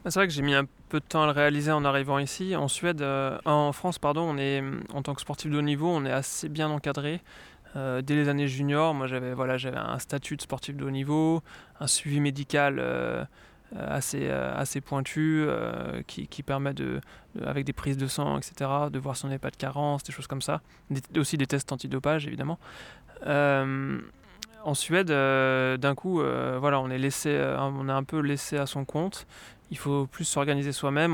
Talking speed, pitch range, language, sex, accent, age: 215 wpm, 135-150 Hz, French, male, French, 20-39